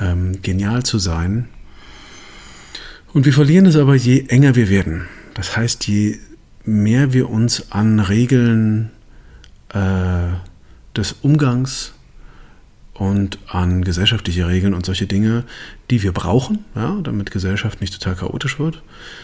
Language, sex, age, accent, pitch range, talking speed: German, male, 40-59, German, 90-120 Hz, 120 wpm